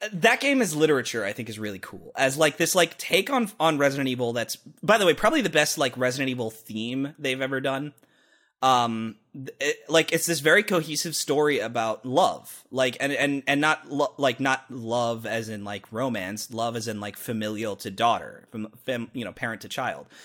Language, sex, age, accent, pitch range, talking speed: English, male, 20-39, American, 115-150 Hz, 200 wpm